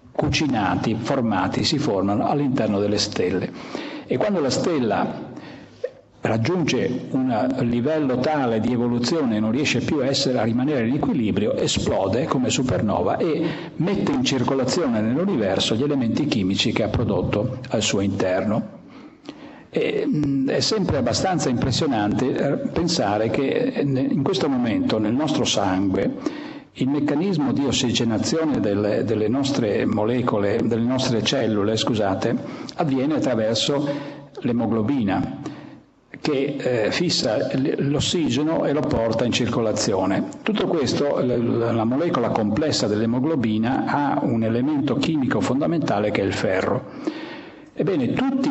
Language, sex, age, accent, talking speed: Italian, male, 60-79, native, 120 wpm